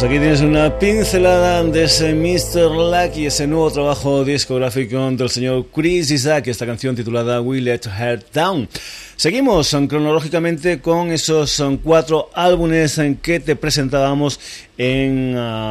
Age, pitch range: 30-49, 120-145 Hz